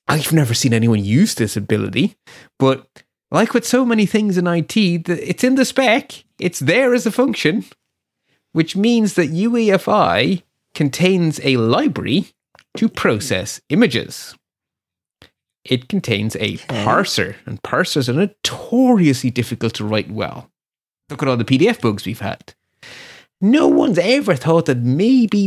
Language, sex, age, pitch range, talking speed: English, male, 30-49, 120-185 Hz, 140 wpm